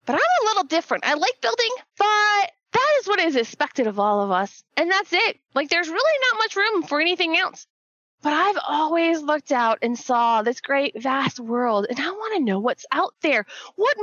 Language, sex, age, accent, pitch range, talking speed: English, female, 20-39, American, 240-390 Hz, 215 wpm